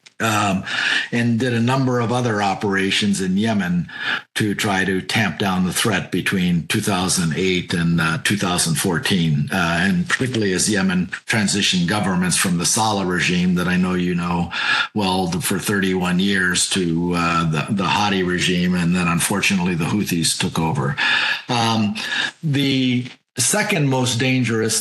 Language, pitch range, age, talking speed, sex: English, 95-130 Hz, 50-69, 145 wpm, male